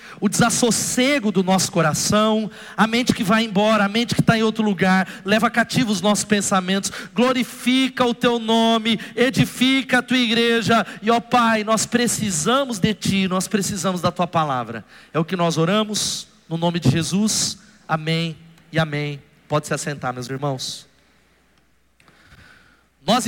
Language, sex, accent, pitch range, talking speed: Portuguese, male, Brazilian, 200-240 Hz, 155 wpm